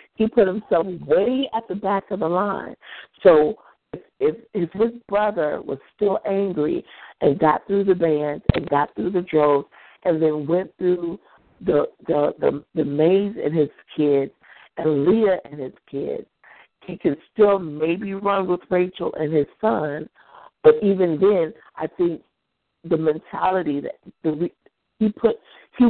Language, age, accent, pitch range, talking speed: English, 50-69, American, 155-200 Hz, 150 wpm